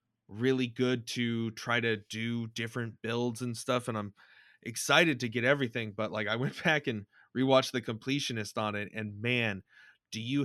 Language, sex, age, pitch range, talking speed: English, male, 20-39, 110-130 Hz, 180 wpm